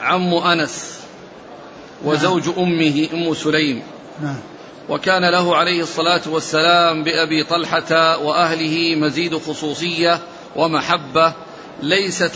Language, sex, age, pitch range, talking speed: Arabic, male, 40-59, 160-175 Hz, 85 wpm